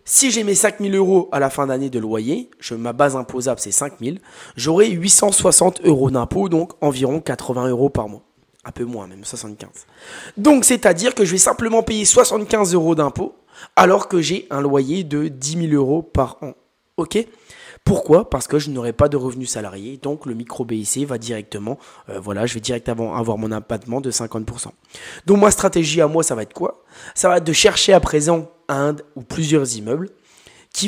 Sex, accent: male, French